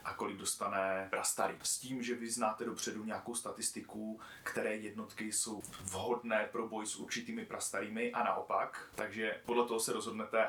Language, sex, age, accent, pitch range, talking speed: Czech, male, 30-49, native, 100-120 Hz, 160 wpm